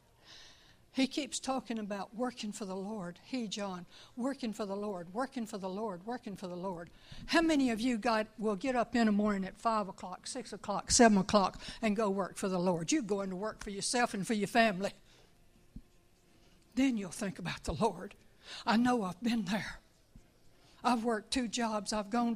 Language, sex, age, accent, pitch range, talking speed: English, female, 60-79, American, 195-230 Hz, 195 wpm